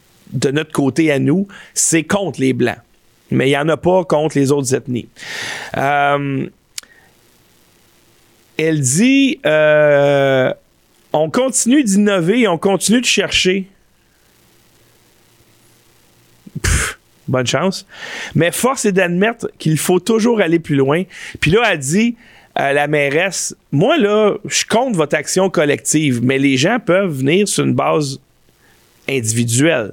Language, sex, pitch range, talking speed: French, male, 135-190 Hz, 140 wpm